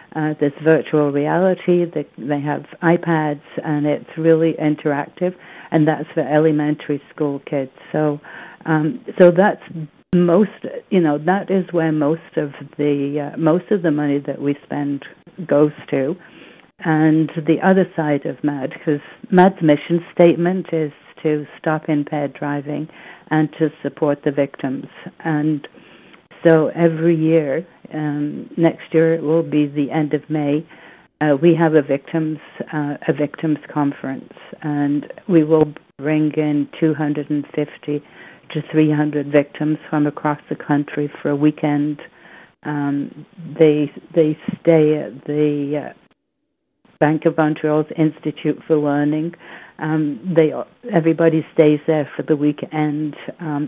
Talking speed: 135 wpm